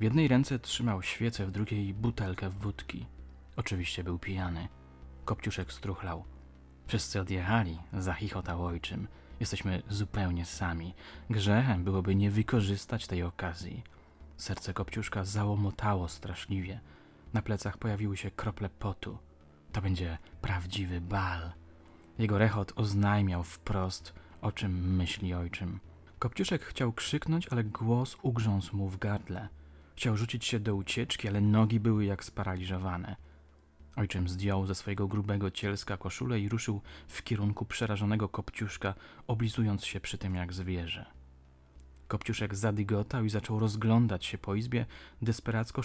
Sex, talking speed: male, 125 wpm